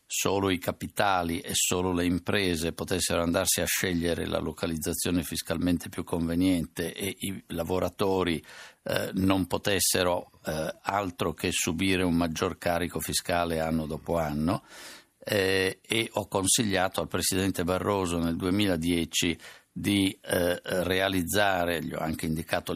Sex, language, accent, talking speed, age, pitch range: male, Italian, native, 130 wpm, 50-69, 85-100 Hz